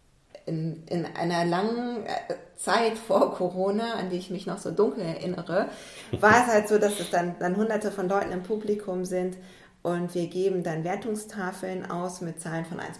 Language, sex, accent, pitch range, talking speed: German, female, German, 160-190 Hz, 180 wpm